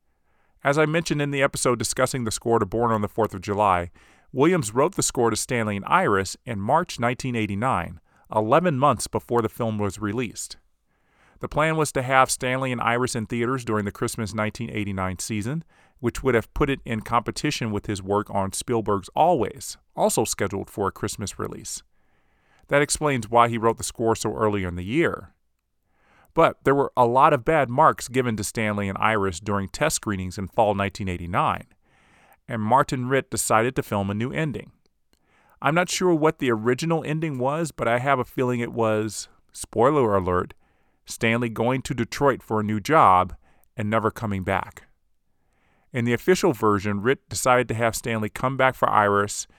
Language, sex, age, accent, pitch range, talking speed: English, male, 40-59, American, 100-130 Hz, 180 wpm